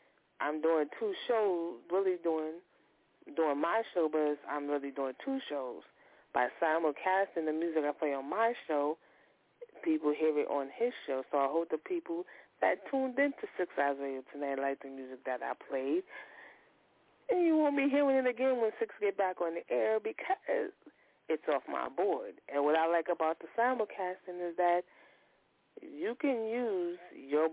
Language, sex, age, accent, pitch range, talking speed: English, female, 30-49, American, 145-200 Hz, 175 wpm